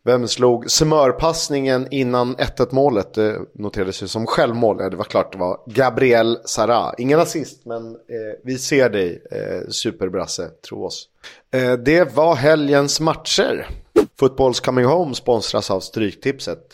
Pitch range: 115-150 Hz